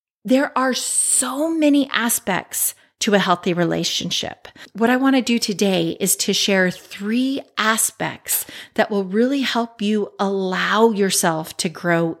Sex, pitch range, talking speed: female, 185-235 Hz, 145 wpm